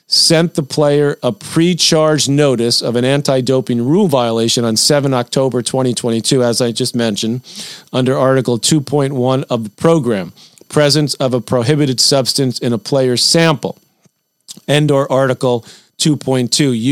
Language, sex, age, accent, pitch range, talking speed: English, male, 40-59, American, 125-145 Hz, 135 wpm